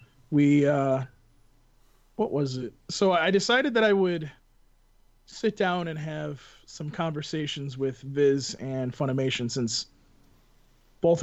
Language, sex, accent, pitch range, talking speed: English, male, American, 130-175 Hz, 125 wpm